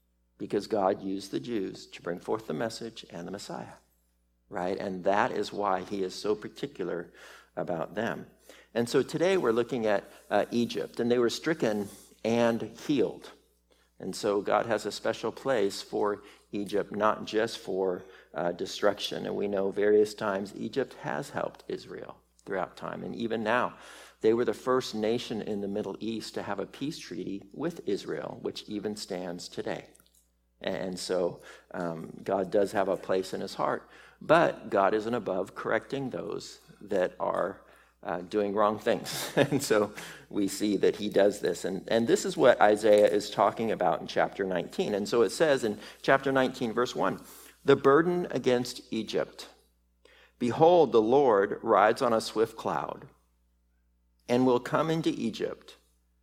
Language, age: English, 50-69